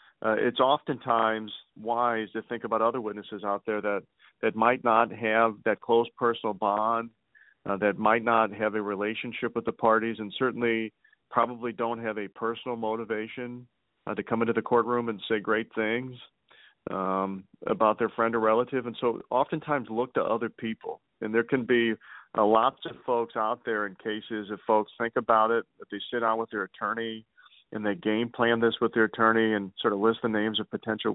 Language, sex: English, male